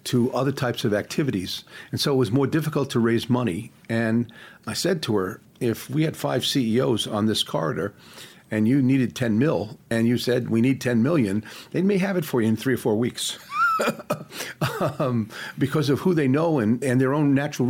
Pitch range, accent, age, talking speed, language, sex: 120-150 Hz, American, 50-69, 205 wpm, English, male